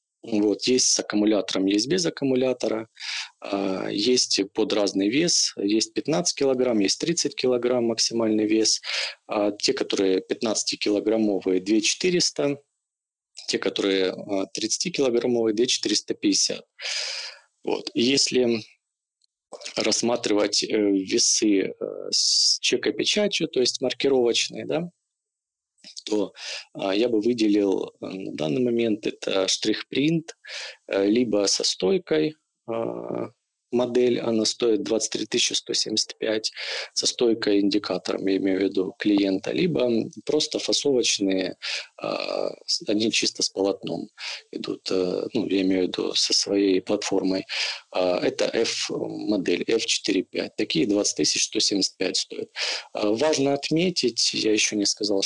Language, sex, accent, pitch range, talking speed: Ukrainian, male, native, 100-135 Hz, 105 wpm